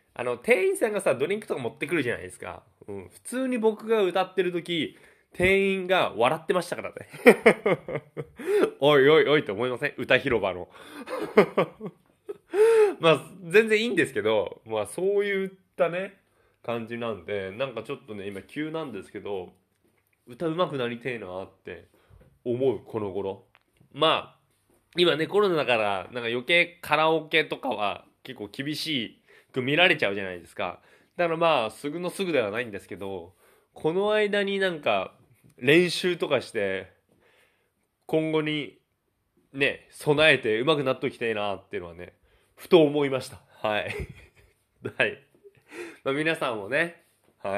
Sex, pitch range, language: male, 115-195 Hz, Japanese